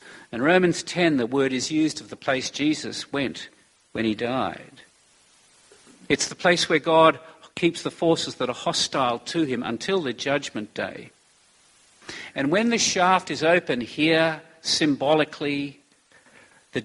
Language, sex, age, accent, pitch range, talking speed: English, male, 50-69, Australian, 125-160 Hz, 145 wpm